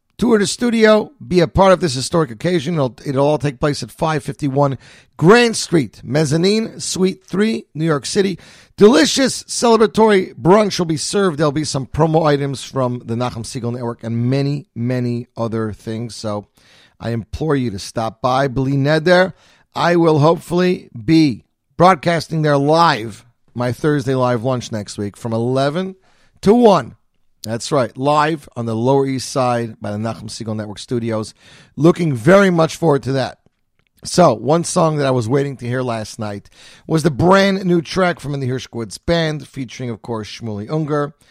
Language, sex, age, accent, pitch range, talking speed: English, male, 40-59, American, 125-175 Hz, 170 wpm